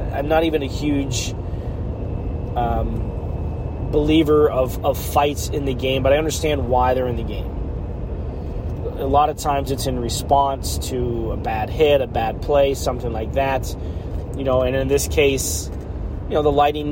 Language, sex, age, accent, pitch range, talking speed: English, male, 30-49, American, 90-145 Hz, 170 wpm